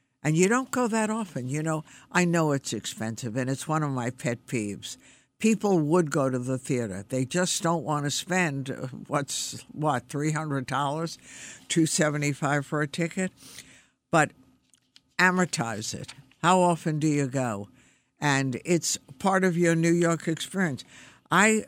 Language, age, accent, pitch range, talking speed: English, 60-79, American, 130-180 Hz, 150 wpm